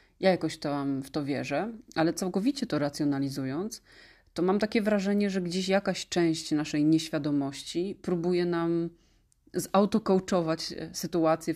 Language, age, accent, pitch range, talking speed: Polish, 30-49, native, 150-175 Hz, 125 wpm